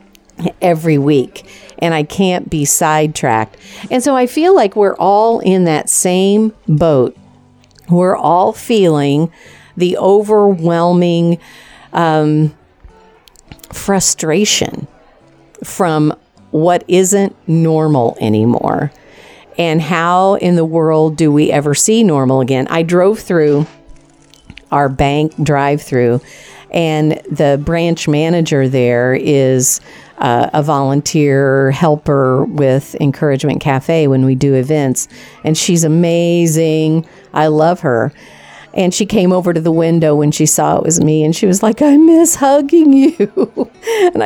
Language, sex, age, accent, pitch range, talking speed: English, female, 50-69, American, 145-185 Hz, 125 wpm